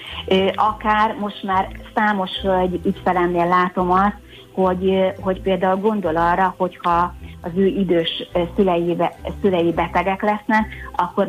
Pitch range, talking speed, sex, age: 170-195 Hz, 115 wpm, female, 30-49